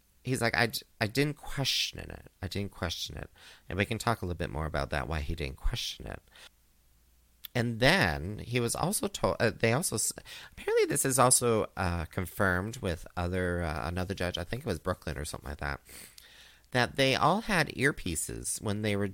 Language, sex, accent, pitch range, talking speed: English, male, American, 85-115 Hz, 200 wpm